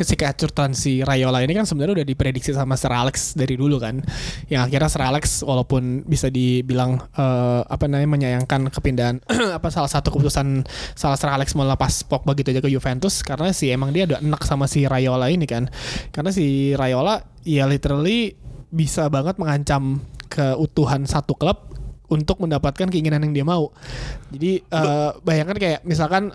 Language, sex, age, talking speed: Indonesian, male, 20-39, 170 wpm